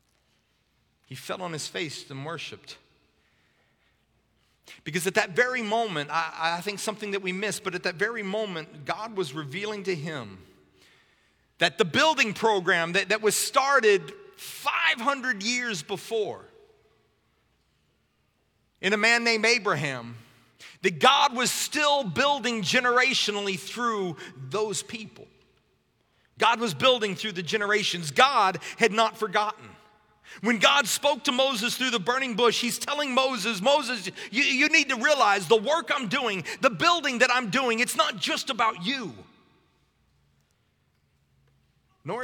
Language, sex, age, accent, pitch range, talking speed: English, male, 40-59, American, 190-260 Hz, 140 wpm